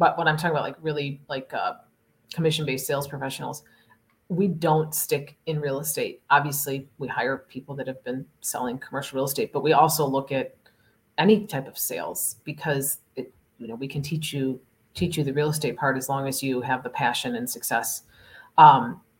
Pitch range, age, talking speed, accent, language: 135-160 Hz, 30-49, 195 wpm, American, English